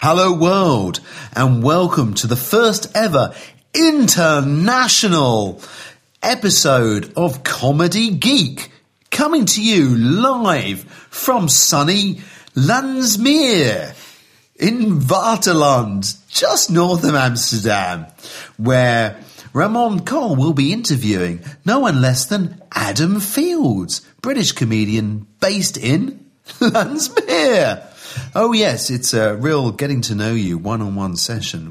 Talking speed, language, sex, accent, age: 100 wpm, Dutch, male, British, 40-59